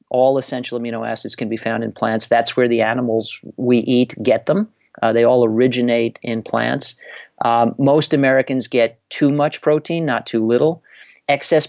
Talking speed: 175 wpm